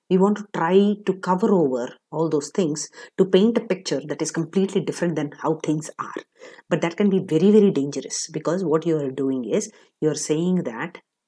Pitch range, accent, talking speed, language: 150-195 Hz, Indian, 200 wpm, English